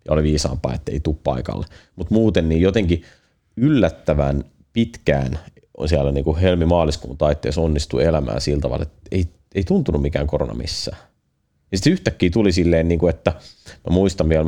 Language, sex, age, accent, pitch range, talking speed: Finnish, male, 30-49, native, 75-90 Hz, 160 wpm